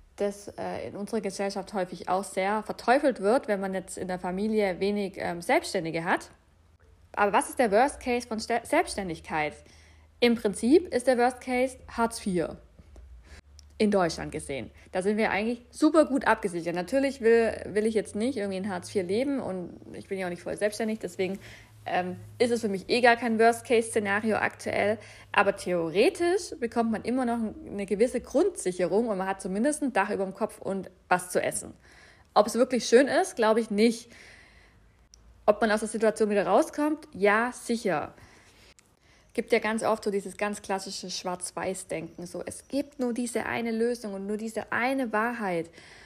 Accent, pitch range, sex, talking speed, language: German, 185-240 Hz, female, 180 wpm, German